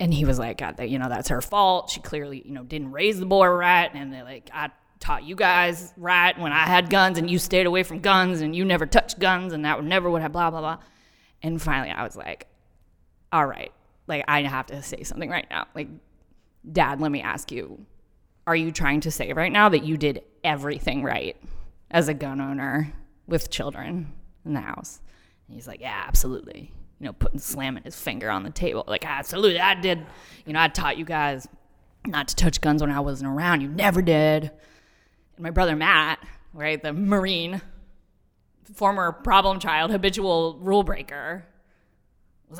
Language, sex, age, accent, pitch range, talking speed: English, female, 20-39, American, 140-185 Hz, 200 wpm